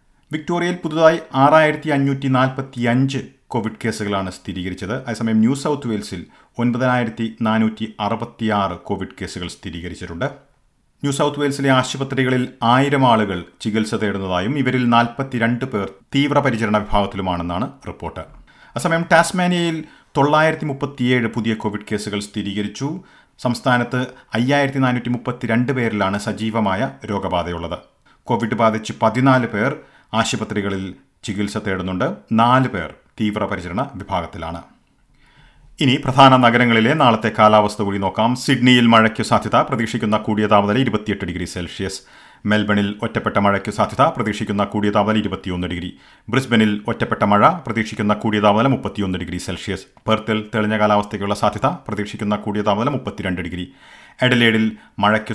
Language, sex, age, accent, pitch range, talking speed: Malayalam, male, 40-59, native, 105-130 Hz, 105 wpm